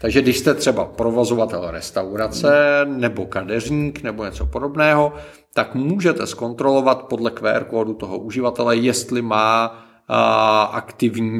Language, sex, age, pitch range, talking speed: Czech, male, 40-59, 110-135 Hz, 110 wpm